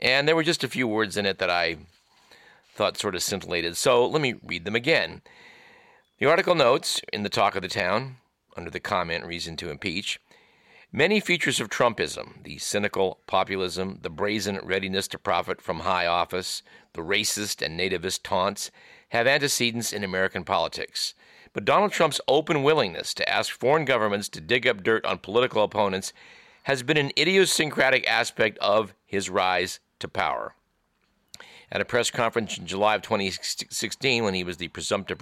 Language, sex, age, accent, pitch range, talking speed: English, male, 50-69, American, 95-135 Hz, 170 wpm